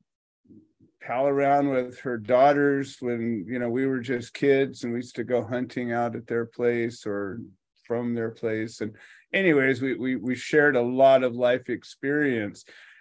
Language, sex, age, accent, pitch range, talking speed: English, male, 40-59, American, 110-130 Hz, 165 wpm